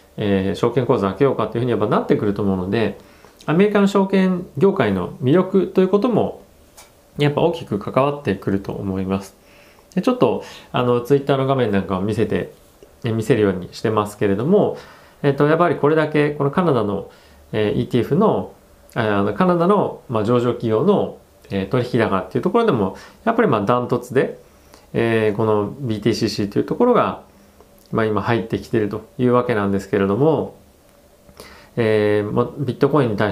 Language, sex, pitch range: Japanese, male, 105-165 Hz